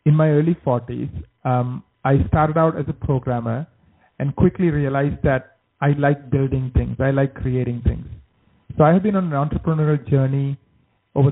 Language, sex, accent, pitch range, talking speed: English, male, Indian, 130-150 Hz, 165 wpm